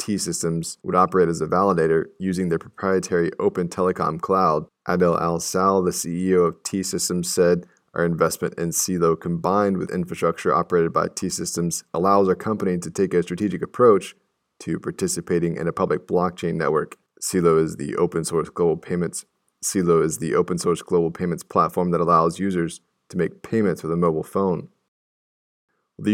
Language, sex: English, male